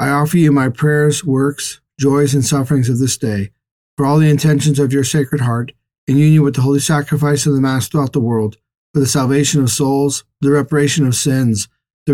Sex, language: male, English